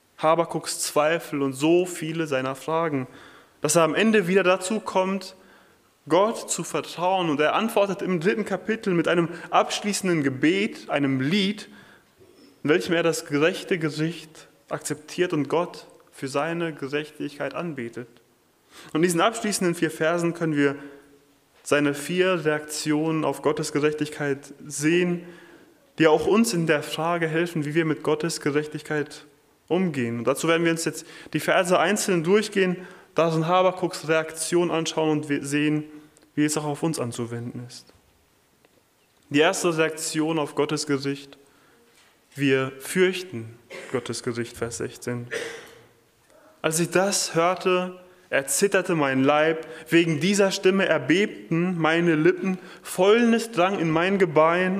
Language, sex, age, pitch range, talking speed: German, male, 20-39, 145-180 Hz, 135 wpm